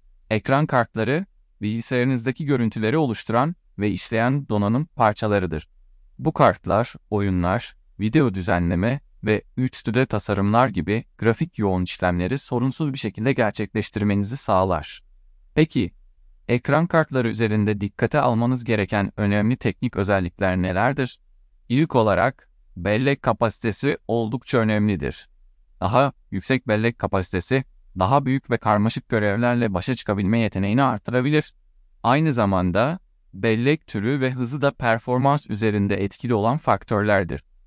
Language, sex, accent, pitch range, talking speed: Turkish, male, native, 100-130 Hz, 110 wpm